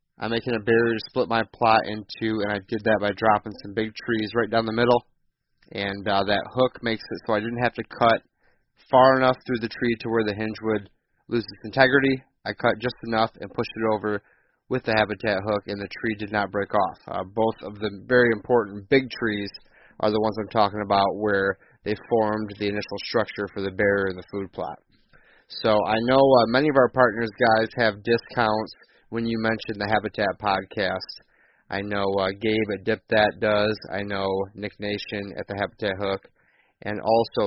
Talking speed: 205 wpm